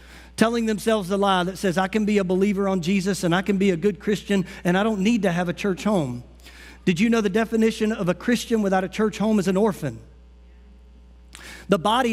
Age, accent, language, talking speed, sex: 40-59, American, English, 230 wpm, male